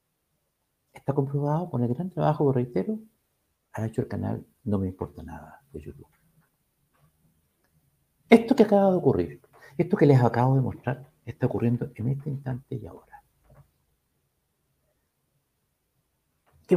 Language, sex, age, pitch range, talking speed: Spanish, male, 60-79, 110-155 Hz, 130 wpm